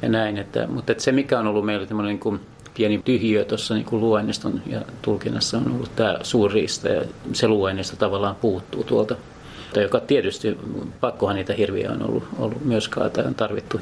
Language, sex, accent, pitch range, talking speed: Finnish, male, native, 105-120 Hz, 165 wpm